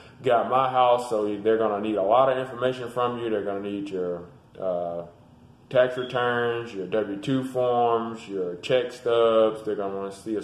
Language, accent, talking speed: English, American, 200 wpm